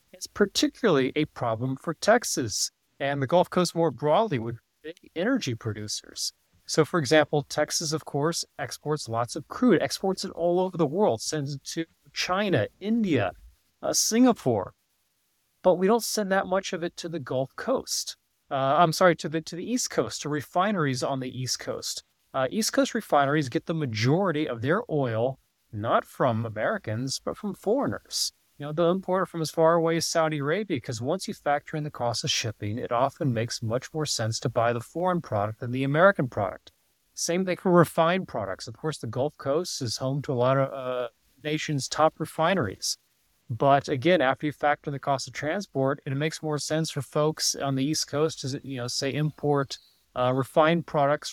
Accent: American